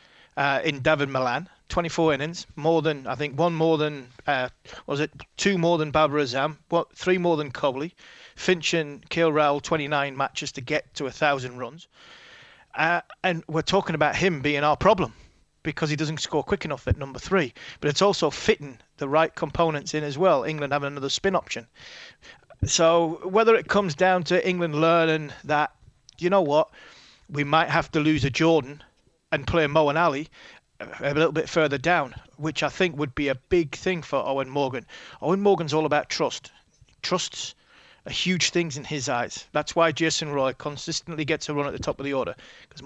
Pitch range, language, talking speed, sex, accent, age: 140-165 Hz, English, 190 wpm, male, British, 30-49